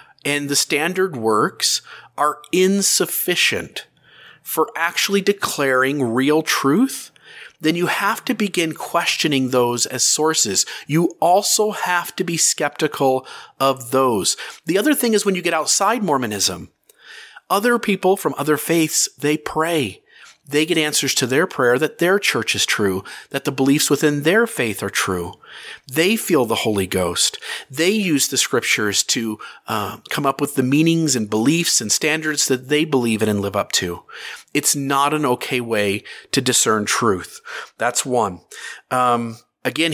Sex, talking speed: male, 155 wpm